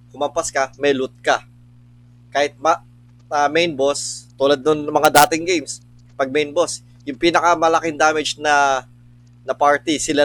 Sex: male